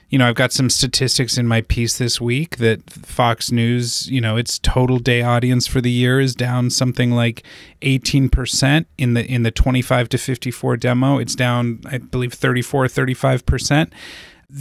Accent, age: American, 30-49